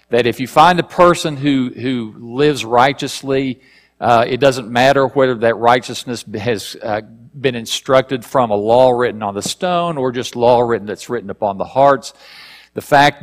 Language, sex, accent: English, male, American